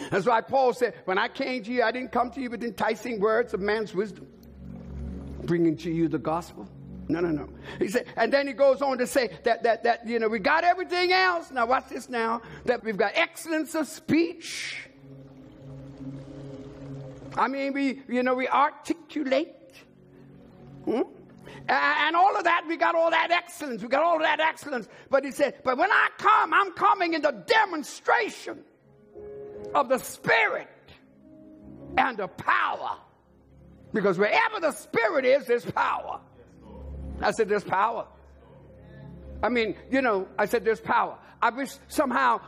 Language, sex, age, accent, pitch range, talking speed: English, male, 60-79, American, 200-300 Hz, 170 wpm